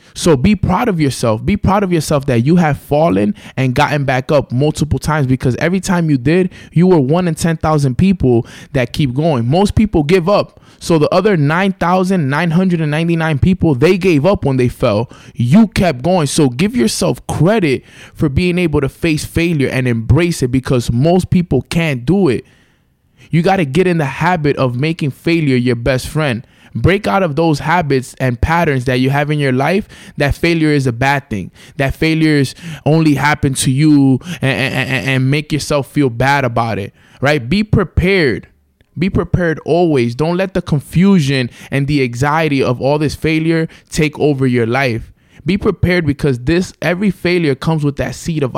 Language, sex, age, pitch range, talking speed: English, male, 20-39, 130-170 Hz, 185 wpm